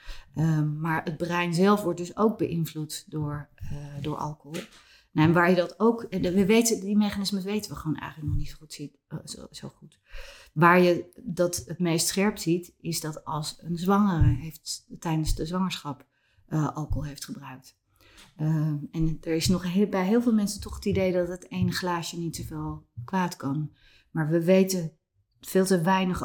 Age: 30-49